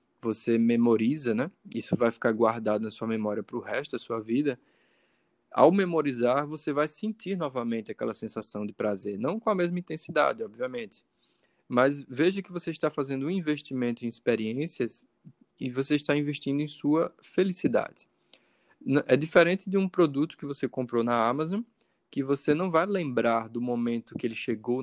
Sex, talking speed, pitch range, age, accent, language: male, 165 wpm, 115-150 Hz, 20-39, Brazilian, Portuguese